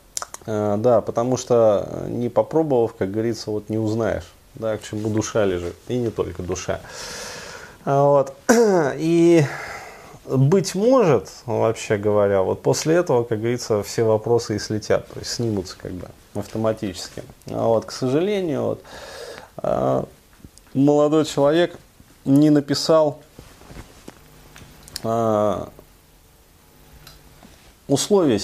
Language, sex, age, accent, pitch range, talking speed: Russian, male, 30-49, native, 95-125 Hz, 105 wpm